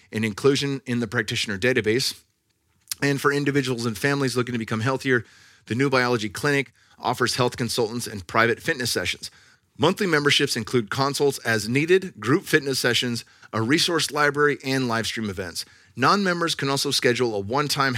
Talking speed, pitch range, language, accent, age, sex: 160 wpm, 110-140 Hz, English, American, 30-49, male